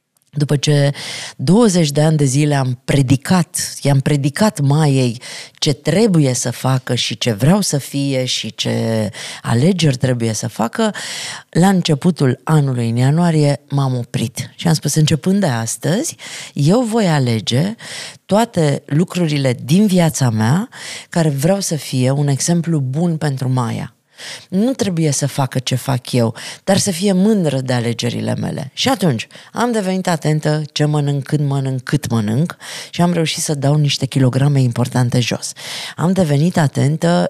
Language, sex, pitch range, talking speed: Romanian, female, 130-175 Hz, 150 wpm